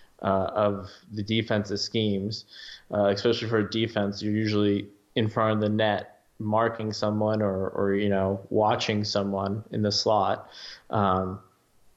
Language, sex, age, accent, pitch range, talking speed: English, male, 20-39, American, 105-115 Hz, 145 wpm